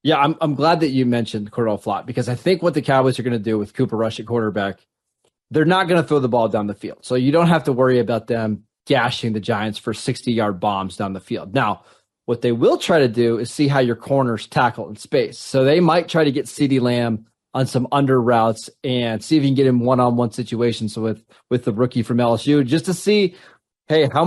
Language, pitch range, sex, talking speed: English, 115-140 Hz, male, 245 wpm